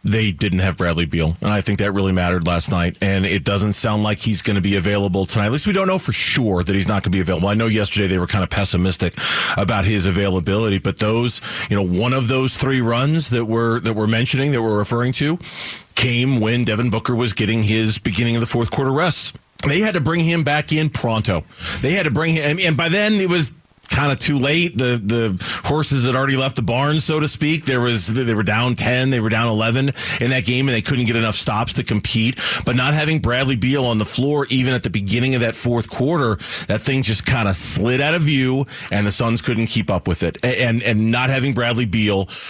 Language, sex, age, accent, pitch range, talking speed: English, male, 30-49, American, 105-135 Hz, 245 wpm